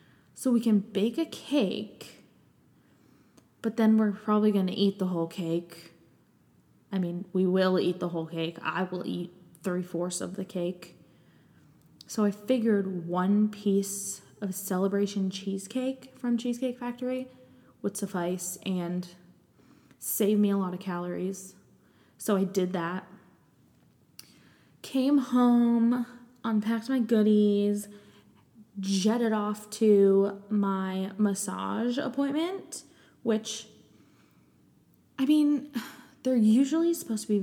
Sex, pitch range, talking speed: female, 190-230 Hz, 120 wpm